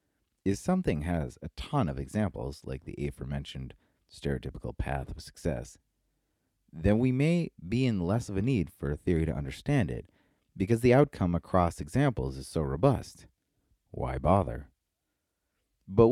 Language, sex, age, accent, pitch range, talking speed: English, male, 30-49, American, 75-120 Hz, 150 wpm